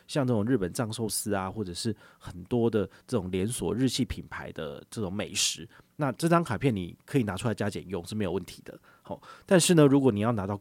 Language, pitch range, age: Chinese, 100-135 Hz, 30-49